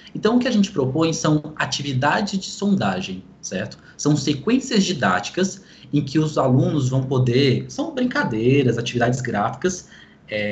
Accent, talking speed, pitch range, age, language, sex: Brazilian, 145 wpm, 125-195 Hz, 20-39, Portuguese, male